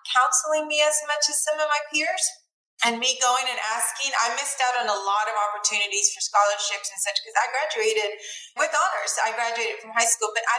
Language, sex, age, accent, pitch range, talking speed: English, female, 30-49, American, 200-250 Hz, 215 wpm